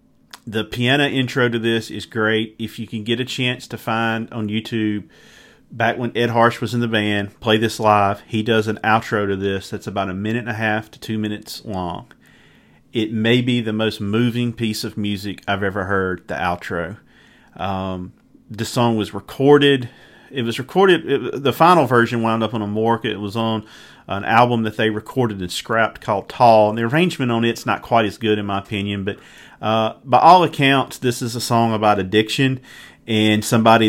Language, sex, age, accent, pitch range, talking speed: English, male, 40-59, American, 105-120 Hz, 200 wpm